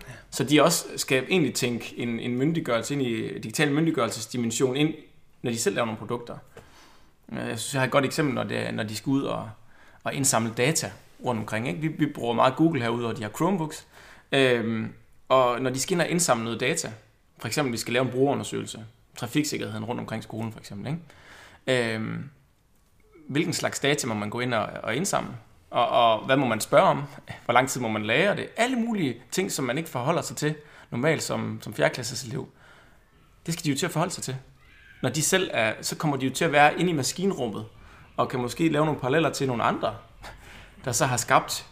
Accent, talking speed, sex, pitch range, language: native, 215 wpm, male, 115-150 Hz, Danish